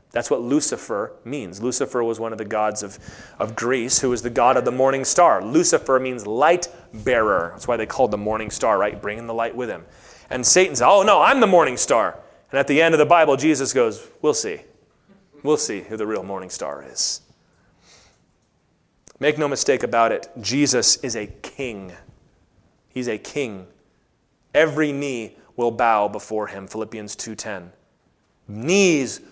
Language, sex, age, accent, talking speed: English, male, 30-49, American, 180 wpm